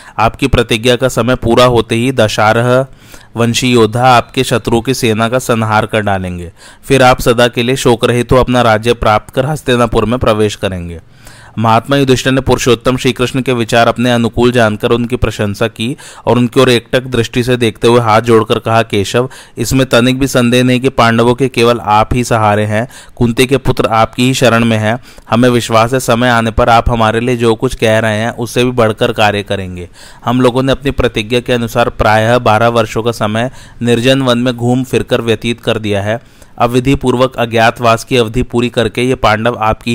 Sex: male